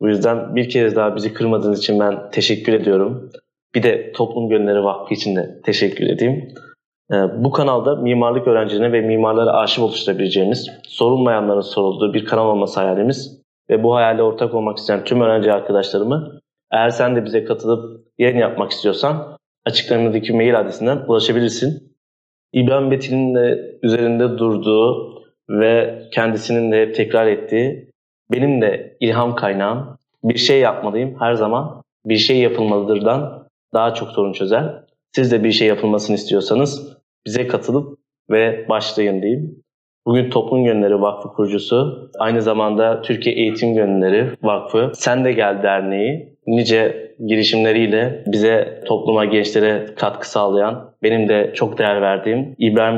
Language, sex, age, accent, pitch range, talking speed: Turkish, male, 30-49, native, 105-125 Hz, 135 wpm